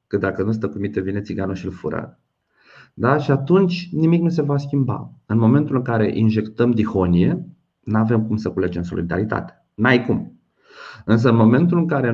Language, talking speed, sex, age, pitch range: Romanian, 185 wpm, male, 30-49, 110-145 Hz